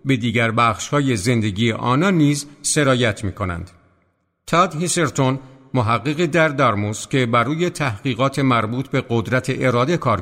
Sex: male